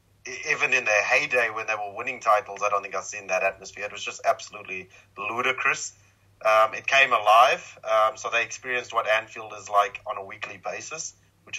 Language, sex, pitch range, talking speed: English, male, 105-125 Hz, 195 wpm